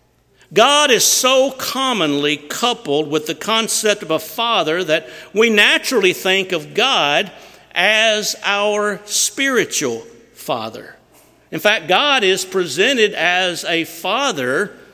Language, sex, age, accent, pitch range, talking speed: English, male, 50-69, American, 180-225 Hz, 115 wpm